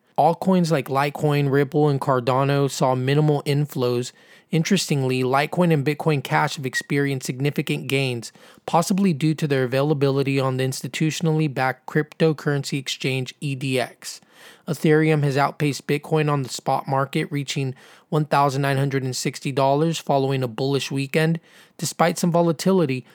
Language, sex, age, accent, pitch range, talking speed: English, male, 20-39, American, 135-155 Hz, 125 wpm